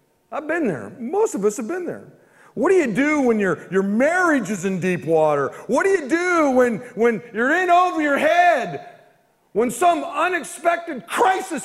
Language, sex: English, male